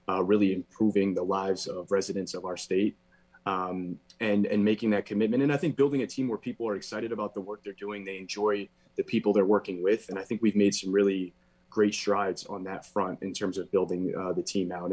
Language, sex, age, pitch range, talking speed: English, male, 20-39, 95-110 Hz, 235 wpm